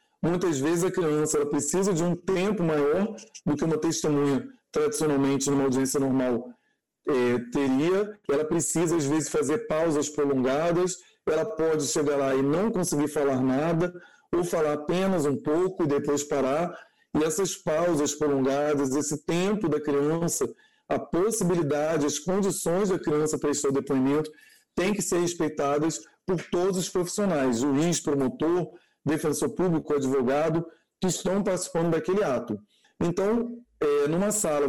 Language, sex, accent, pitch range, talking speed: Portuguese, male, Brazilian, 150-190 Hz, 145 wpm